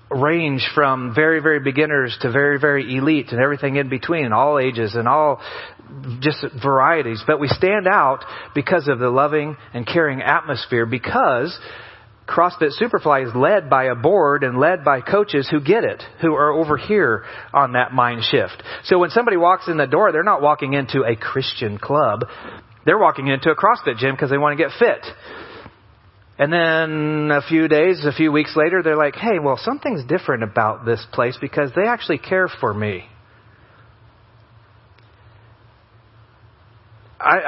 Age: 40-59